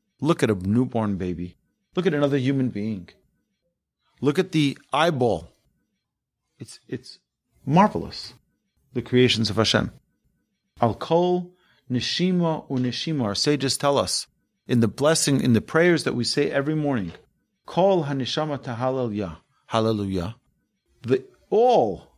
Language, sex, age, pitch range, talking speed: English, male, 40-59, 110-155 Hz, 115 wpm